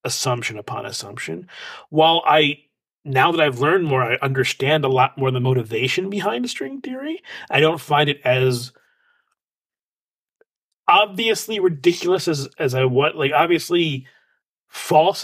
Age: 40-59